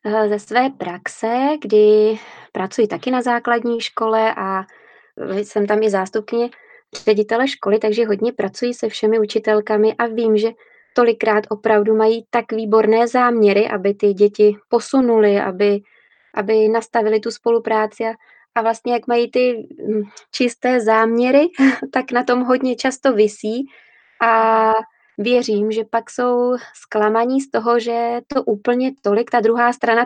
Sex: female